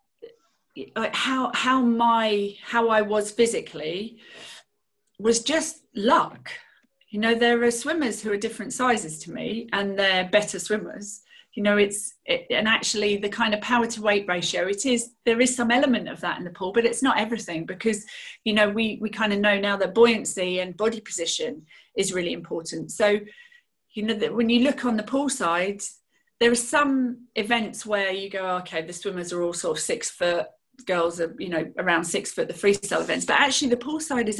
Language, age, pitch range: English, 40-59, 195-240 Hz